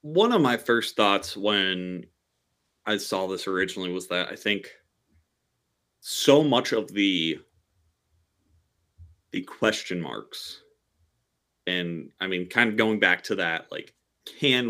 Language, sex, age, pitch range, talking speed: English, male, 30-49, 90-120 Hz, 130 wpm